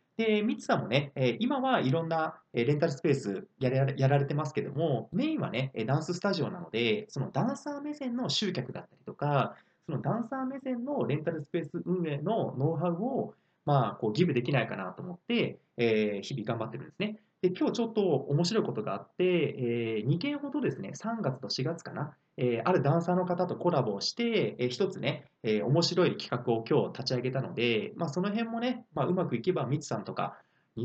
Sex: male